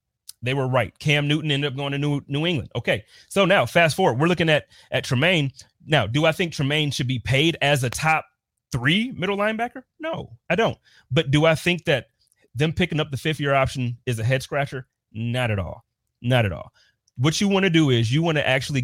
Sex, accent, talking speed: male, American, 225 wpm